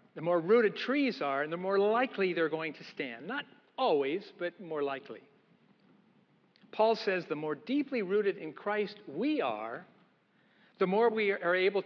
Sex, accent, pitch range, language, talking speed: male, American, 150-210 Hz, English, 165 wpm